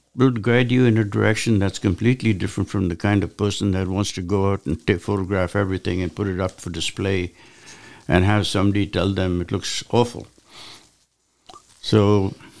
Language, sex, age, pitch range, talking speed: English, male, 60-79, 95-115 Hz, 175 wpm